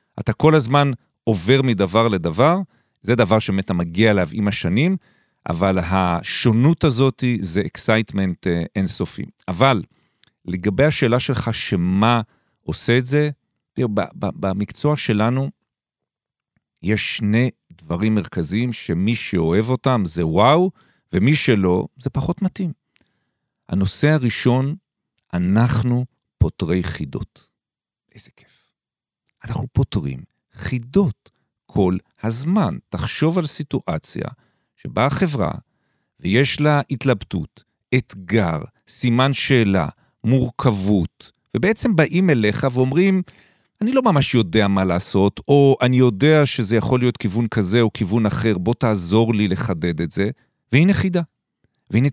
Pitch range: 105-145 Hz